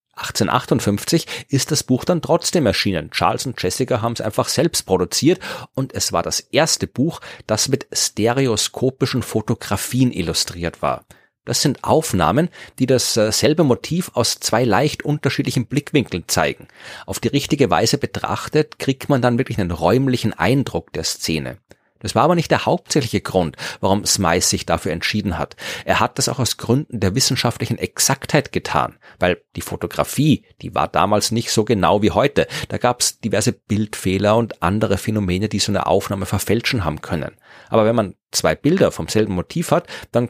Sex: male